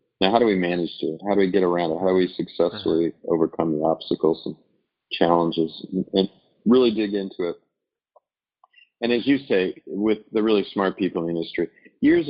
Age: 40-59